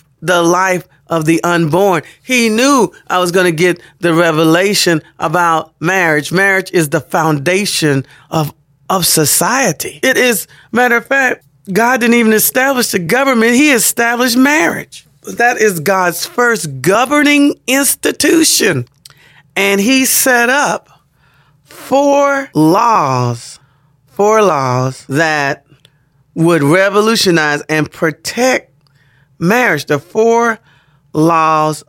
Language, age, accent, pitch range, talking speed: English, 40-59, American, 145-190 Hz, 115 wpm